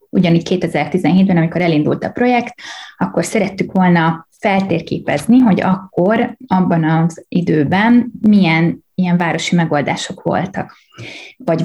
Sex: female